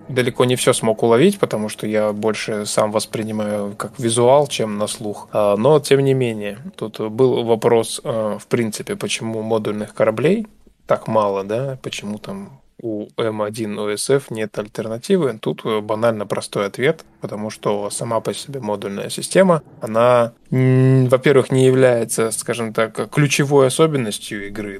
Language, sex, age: Russian, male, 20-39